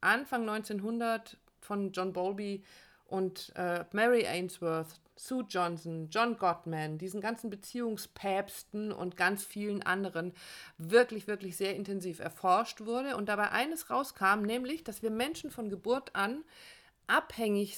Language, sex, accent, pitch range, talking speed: German, female, German, 180-235 Hz, 130 wpm